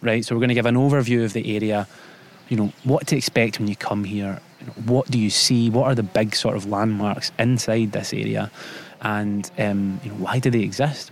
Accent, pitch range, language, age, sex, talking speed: British, 105-125 Hz, English, 20-39, male, 235 wpm